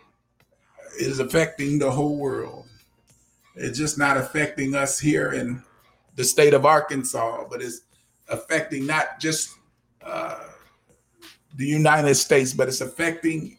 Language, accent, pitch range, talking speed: English, American, 135-170 Hz, 125 wpm